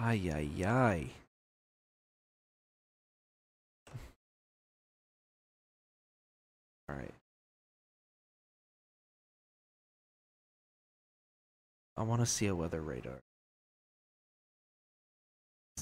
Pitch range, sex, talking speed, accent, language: 75-115 Hz, male, 40 wpm, American, English